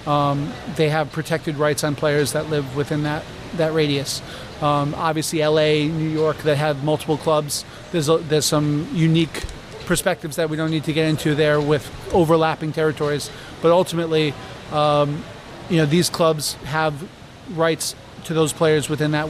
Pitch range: 150-165 Hz